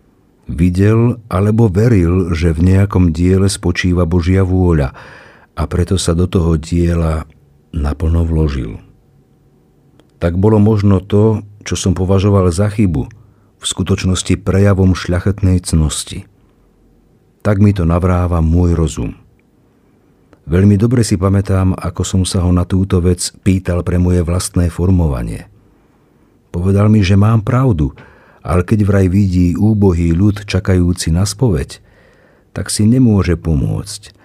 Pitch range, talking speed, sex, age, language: 85-100 Hz, 125 wpm, male, 50-69, Slovak